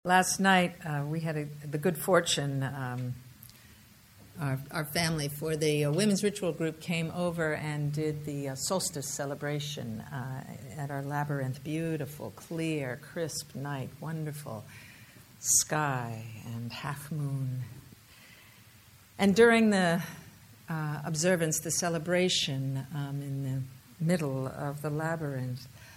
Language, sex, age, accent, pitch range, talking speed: English, female, 60-79, American, 130-165 Hz, 120 wpm